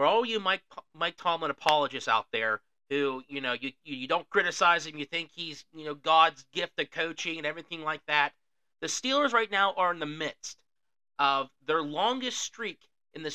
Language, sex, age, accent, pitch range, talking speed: English, male, 40-59, American, 160-235 Hz, 200 wpm